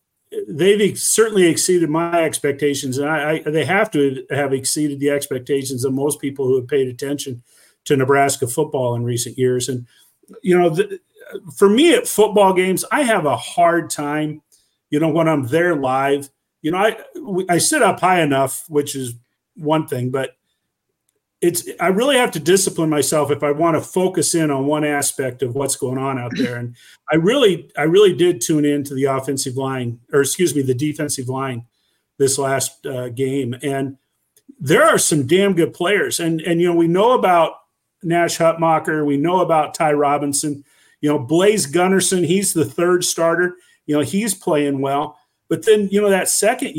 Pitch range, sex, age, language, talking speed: 140-180 Hz, male, 50-69, English, 180 wpm